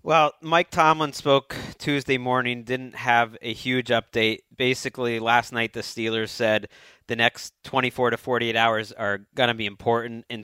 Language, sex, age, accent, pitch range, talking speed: English, male, 30-49, American, 110-135 Hz, 165 wpm